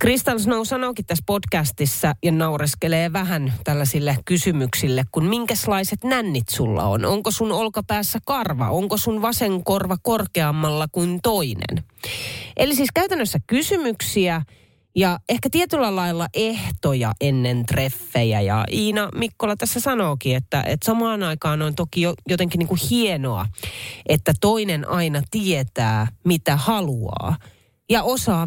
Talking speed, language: 125 wpm, Finnish